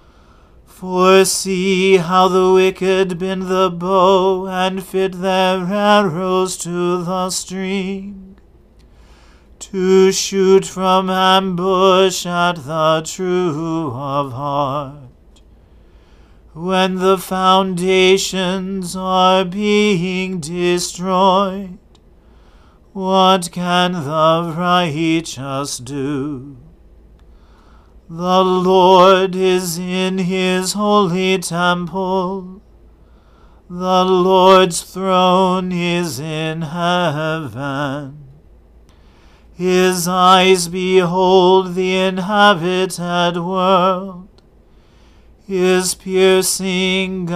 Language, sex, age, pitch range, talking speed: English, male, 40-59, 160-185 Hz, 70 wpm